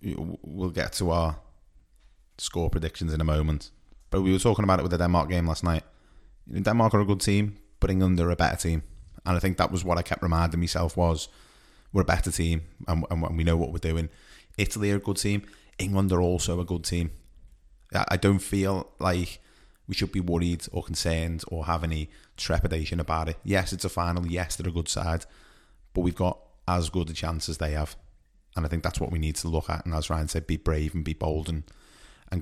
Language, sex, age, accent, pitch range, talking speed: English, male, 20-39, British, 80-95 Hz, 225 wpm